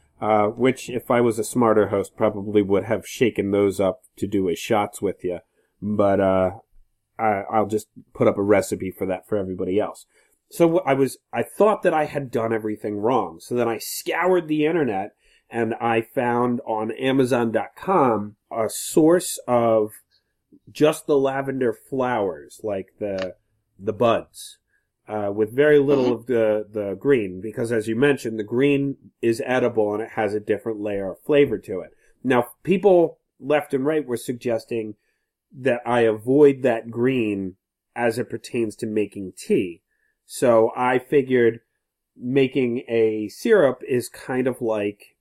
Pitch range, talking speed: 105-130 Hz, 160 wpm